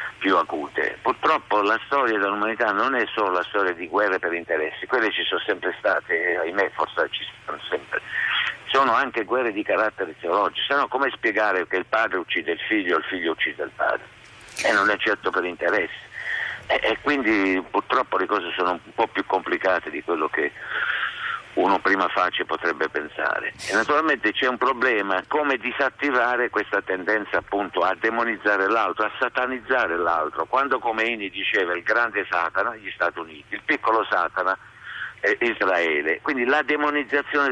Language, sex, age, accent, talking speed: Italian, male, 60-79, native, 170 wpm